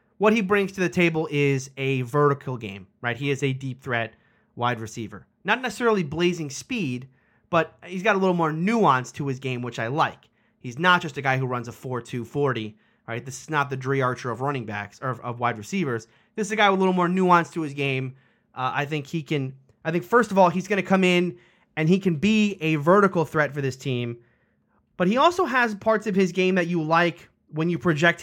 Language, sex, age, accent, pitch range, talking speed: English, male, 30-49, American, 130-180 Hz, 230 wpm